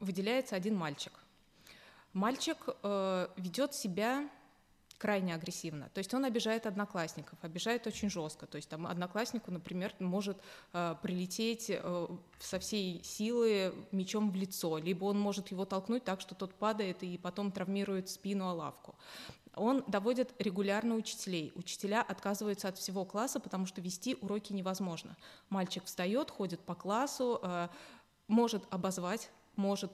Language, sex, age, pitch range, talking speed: Russian, female, 20-39, 180-220 Hz, 140 wpm